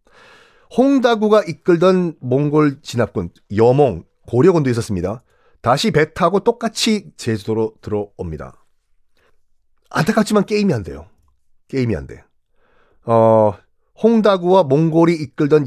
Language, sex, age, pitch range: Korean, male, 40-59, 105-170 Hz